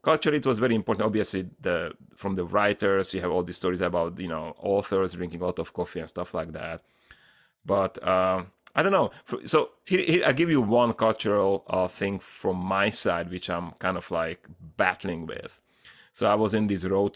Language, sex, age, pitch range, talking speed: English, male, 30-49, 90-110 Hz, 205 wpm